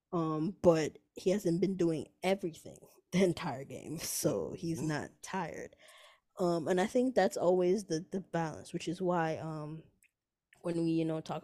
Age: 20-39